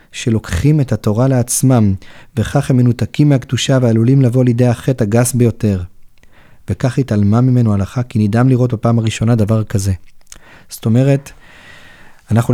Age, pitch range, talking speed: 30-49, 115-140 Hz, 135 wpm